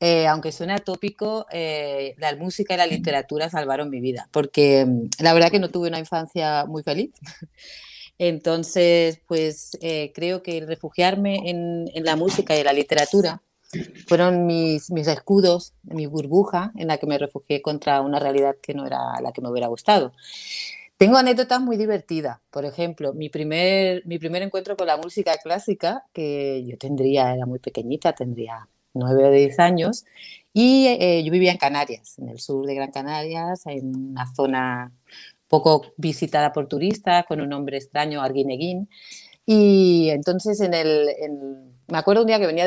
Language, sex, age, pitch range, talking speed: Spanish, female, 30-49, 140-180 Hz, 170 wpm